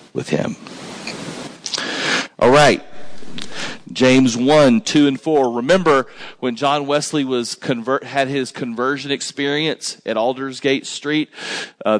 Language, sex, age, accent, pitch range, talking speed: English, male, 40-59, American, 120-150 Hz, 110 wpm